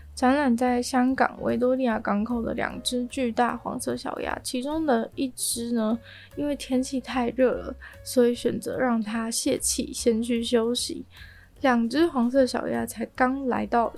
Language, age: Chinese, 20-39